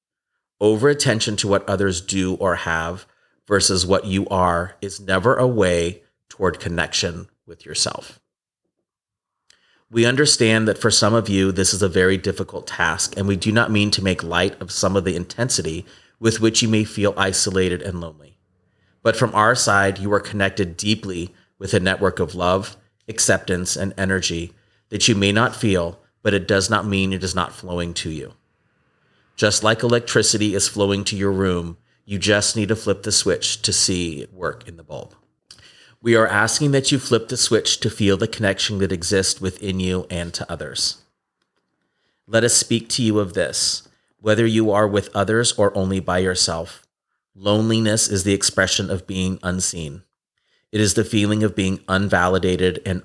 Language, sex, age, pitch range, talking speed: English, male, 30-49, 95-110 Hz, 180 wpm